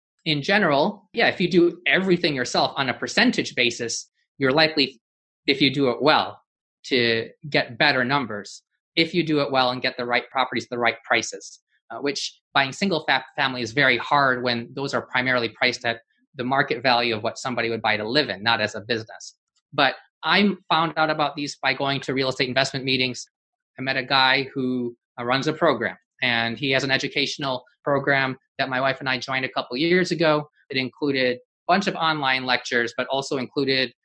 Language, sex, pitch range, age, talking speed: English, male, 125-150 Hz, 30-49, 200 wpm